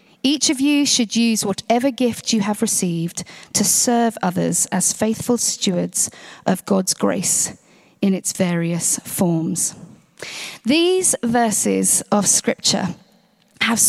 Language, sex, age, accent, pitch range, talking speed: English, female, 40-59, British, 205-270 Hz, 120 wpm